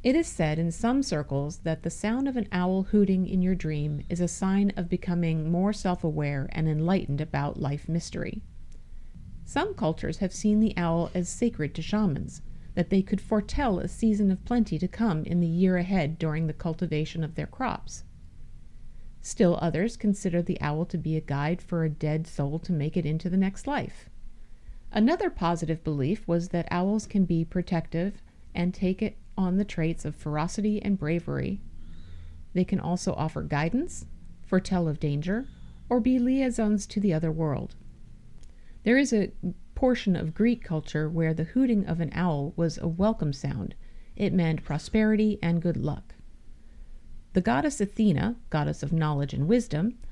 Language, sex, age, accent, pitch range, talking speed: English, female, 50-69, American, 160-205 Hz, 170 wpm